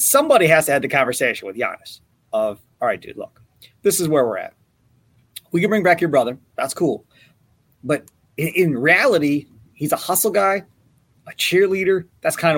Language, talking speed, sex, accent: English, 175 wpm, male, American